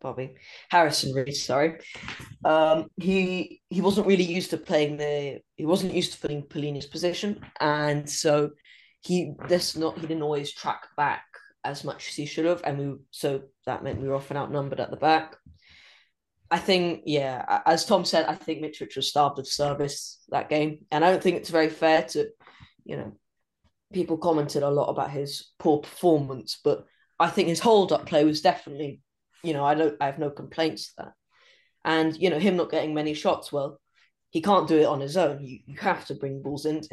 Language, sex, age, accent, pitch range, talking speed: English, female, 20-39, British, 145-175 Hz, 200 wpm